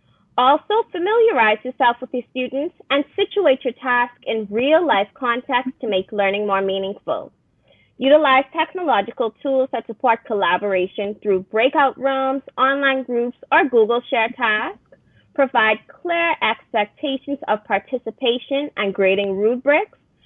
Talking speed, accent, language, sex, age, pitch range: 120 wpm, American, English, female, 20-39, 205-280 Hz